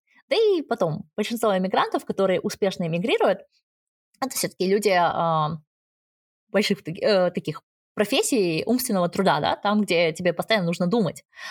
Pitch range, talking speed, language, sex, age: 175-230 Hz, 135 wpm, Russian, female, 20-39